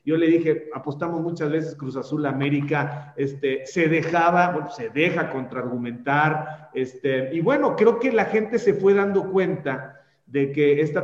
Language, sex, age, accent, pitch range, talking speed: Spanish, male, 40-59, Mexican, 140-180 Hz, 165 wpm